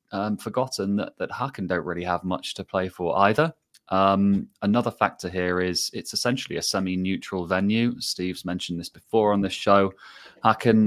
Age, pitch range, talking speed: 20-39, 90-110 Hz, 170 wpm